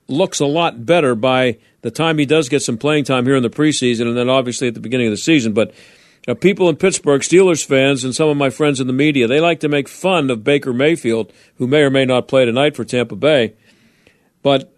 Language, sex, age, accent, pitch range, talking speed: English, male, 50-69, American, 130-170 Hz, 250 wpm